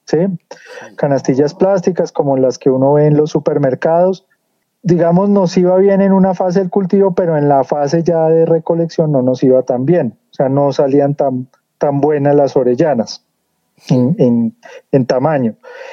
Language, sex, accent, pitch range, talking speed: Spanish, male, Colombian, 140-170 Hz, 170 wpm